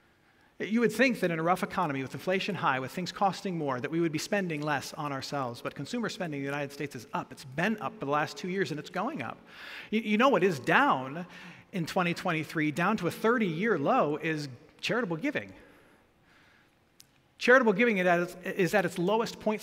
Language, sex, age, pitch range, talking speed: English, male, 40-59, 150-205 Hz, 200 wpm